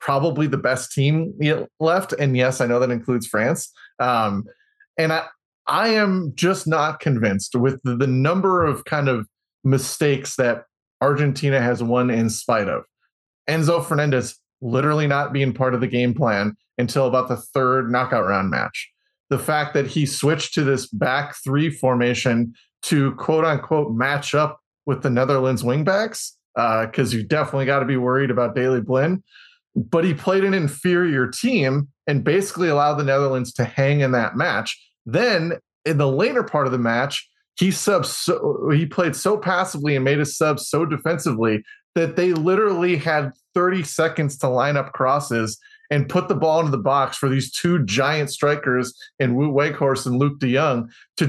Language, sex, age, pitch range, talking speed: English, male, 30-49, 130-160 Hz, 170 wpm